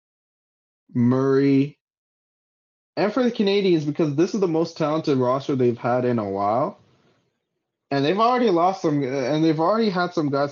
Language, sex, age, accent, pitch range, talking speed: English, male, 20-39, American, 115-155 Hz, 160 wpm